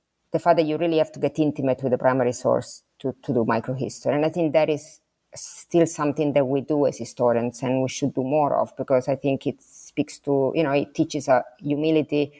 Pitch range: 135-160 Hz